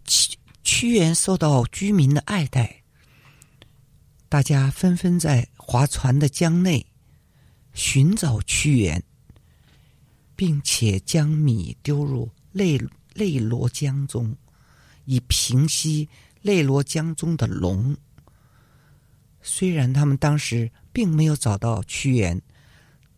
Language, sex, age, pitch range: Chinese, male, 50-69, 120-165 Hz